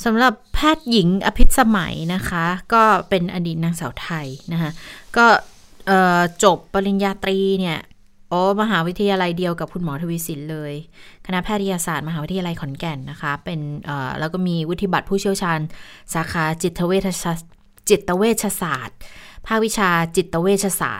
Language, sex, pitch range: Thai, female, 165-200 Hz